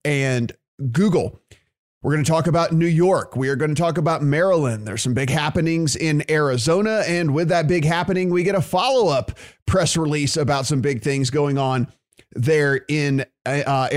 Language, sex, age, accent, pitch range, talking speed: English, male, 30-49, American, 140-170 Hz, 180 wpm